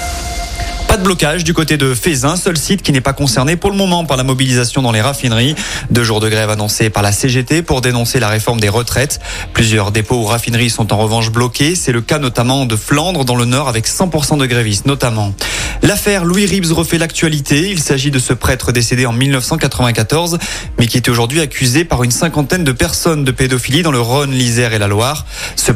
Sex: male